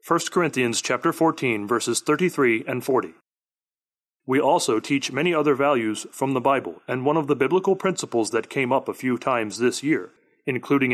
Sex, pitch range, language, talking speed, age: male, 125-165 Hz, English, 175 wpm, 30-49